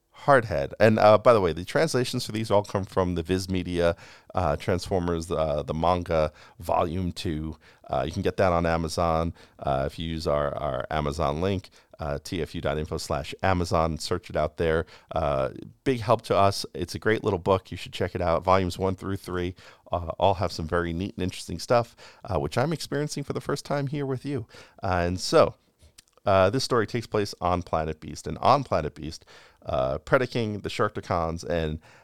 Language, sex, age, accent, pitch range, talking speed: English, male, 40-59, American, 80-110 Hz, 195 wpm